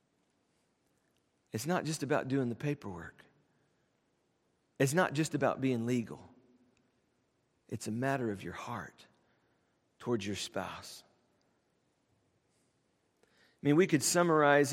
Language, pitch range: English, 120-155 Hz